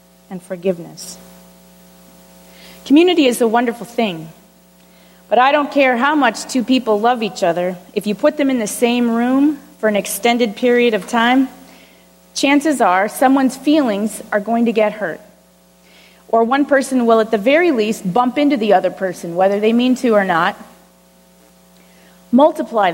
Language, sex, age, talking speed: English, female, 30-49, 160 wpm